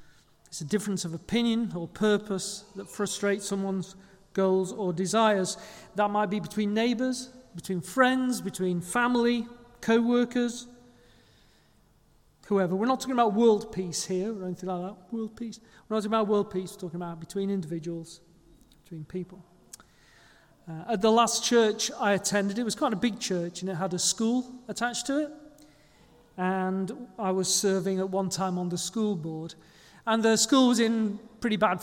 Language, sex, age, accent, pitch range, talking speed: English, male, 40-59, British, 185-225 Hz, 170 wpm